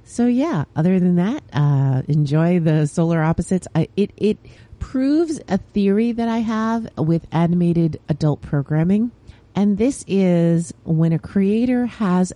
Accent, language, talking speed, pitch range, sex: American, English, 145 wpm, 140-195 Hz, female